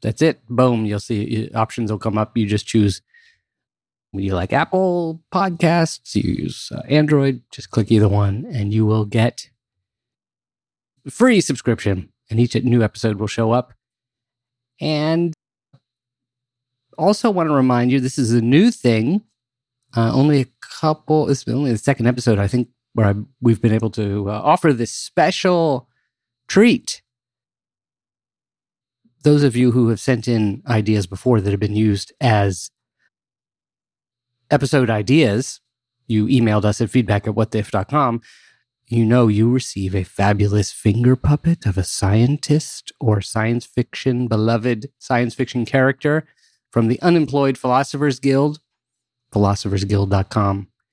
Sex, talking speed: male, 140 wpm